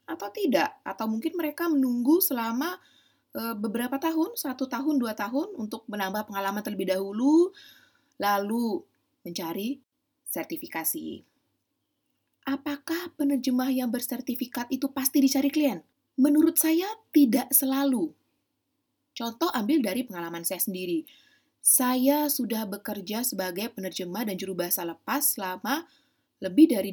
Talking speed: 115 wpm